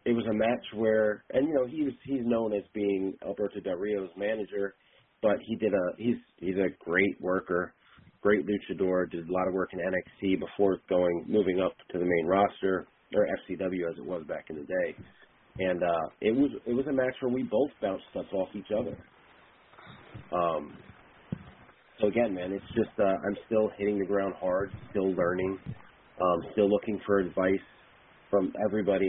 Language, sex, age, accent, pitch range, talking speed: English, male, 30-49, American, 95-115 Hz, 185 wpm